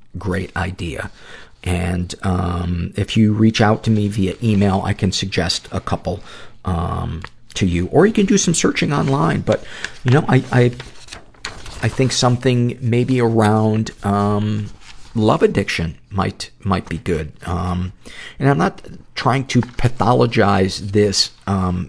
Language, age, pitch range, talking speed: English, 50-69, 100-125 Hz, 145 wpm